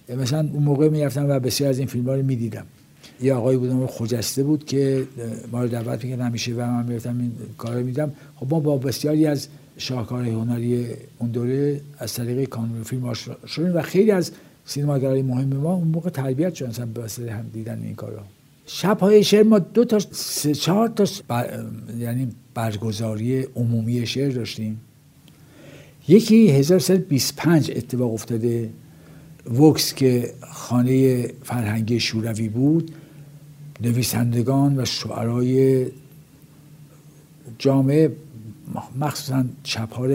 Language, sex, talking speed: Persian, male, 145 wpm